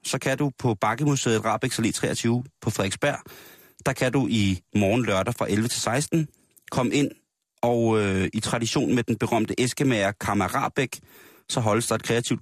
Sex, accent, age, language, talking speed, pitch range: male, native, 30-49, Danish, 170 wpm, 110-145 Hz